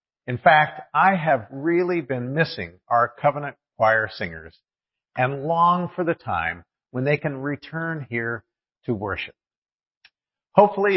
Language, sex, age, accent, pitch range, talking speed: English, male, 50-69, American, 115-165 Hz, 130 wpm